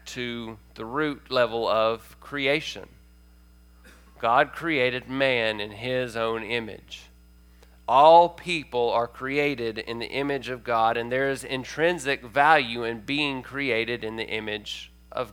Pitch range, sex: 105-145 Hz, male